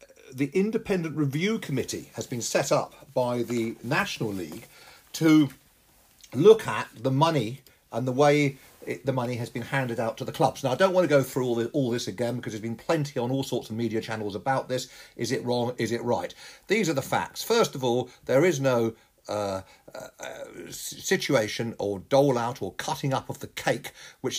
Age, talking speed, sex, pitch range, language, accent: 50-69, 205 wpm, male, 115-150 Hz, English, British